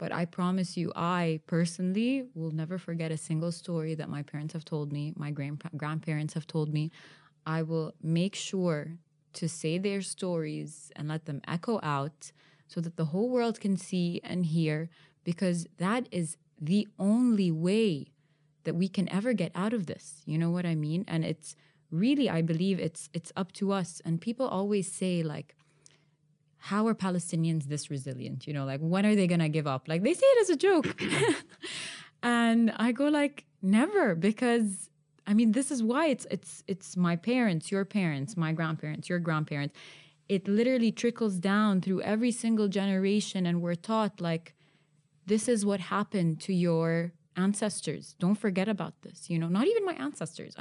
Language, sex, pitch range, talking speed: English, female, 160-205 Hz, 180 wpm